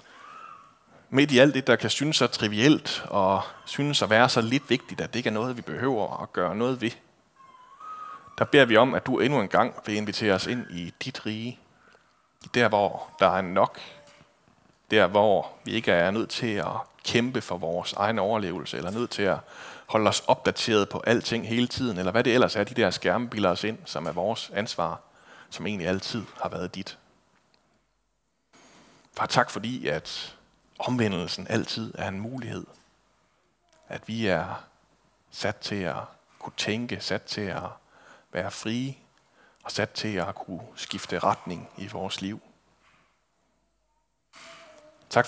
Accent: native